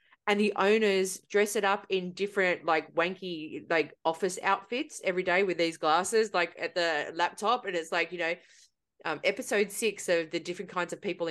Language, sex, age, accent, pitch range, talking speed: English, female, 30-49, Australian, 175-295 Hz, 190 wpm